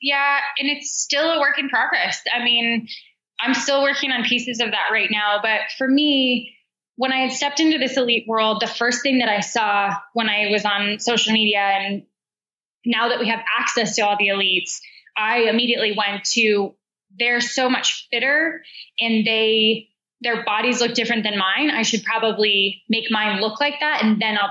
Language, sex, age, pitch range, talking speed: English, female, 10-29, 210-250 Hz, 195 wpm